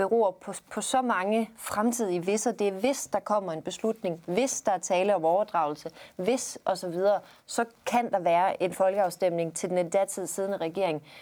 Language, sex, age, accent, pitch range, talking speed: Danish, female, 30-49, native, 180-225 Hz, 185 wpm